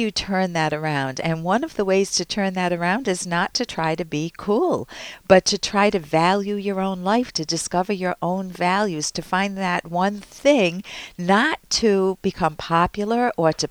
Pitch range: 160-200 Hz